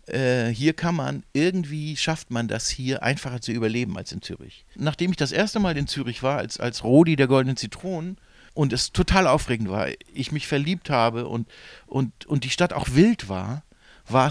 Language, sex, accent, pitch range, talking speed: German, male, German, 120-165 Hz, 195 wpm